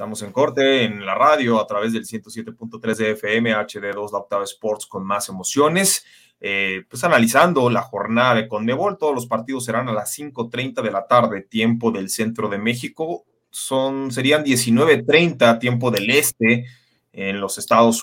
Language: Spanish